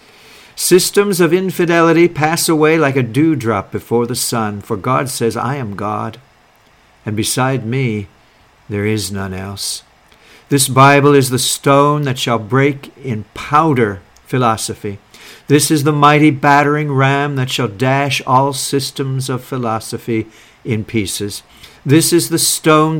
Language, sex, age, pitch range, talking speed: English, male, 60-79, 110-145 Hz, 145 wpm